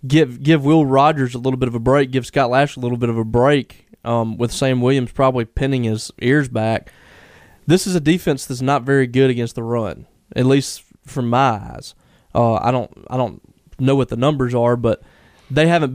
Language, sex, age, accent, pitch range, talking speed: English, male, 20-39, American, 120-140 Hz, 215 wpm